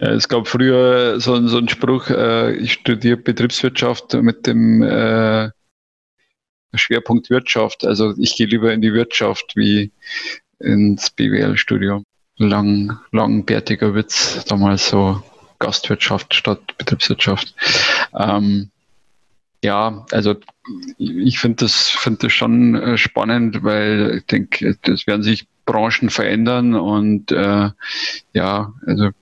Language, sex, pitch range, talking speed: German, male, 105-120 Hz, 105 wpm